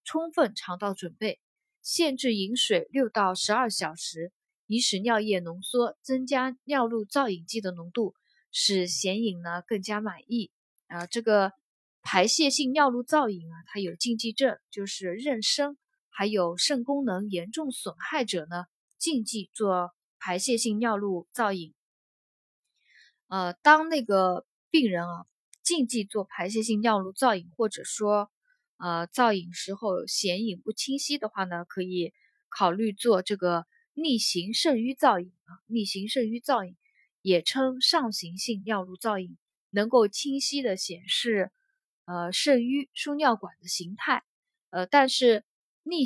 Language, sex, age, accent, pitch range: Chinese, female, 20-39, native, 185-255 Hz